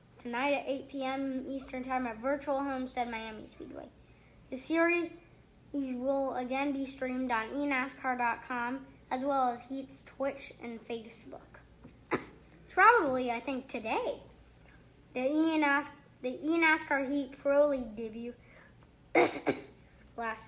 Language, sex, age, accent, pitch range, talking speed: English, female, 10-29, American, 235-285 Hz, 115 wpm